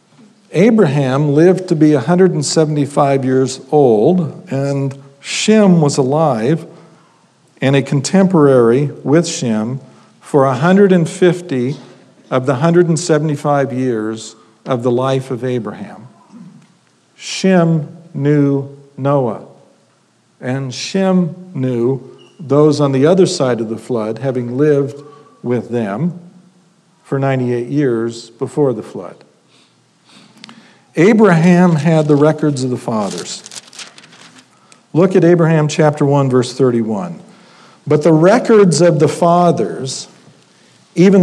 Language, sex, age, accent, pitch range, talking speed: English, male, 50-69, American, 135-175 Hz, 105 wpm